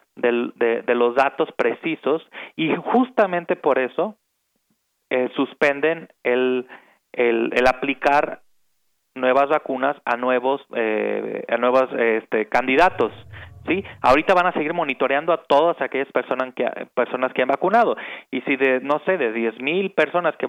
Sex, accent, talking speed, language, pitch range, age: male, Mexican, 145 wpm, Spanish, 130-160 Hz, 30-49